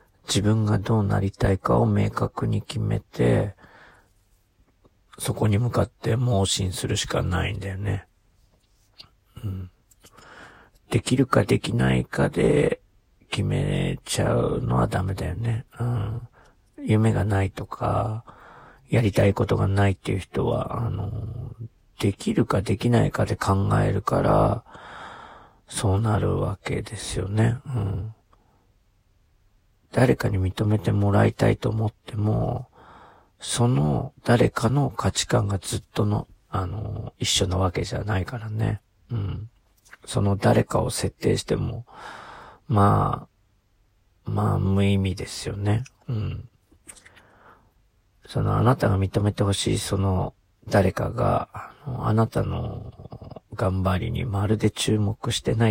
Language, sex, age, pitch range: Japanese, male, 40-59, 100-120 Hz